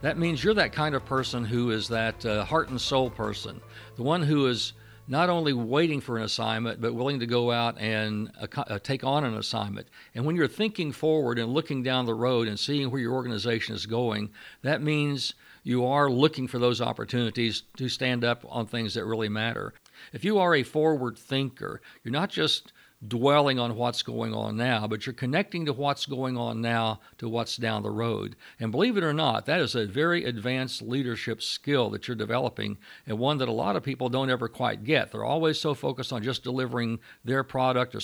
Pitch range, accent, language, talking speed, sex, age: 110-135 Hz, American, English, 210 wpm, male, 60-79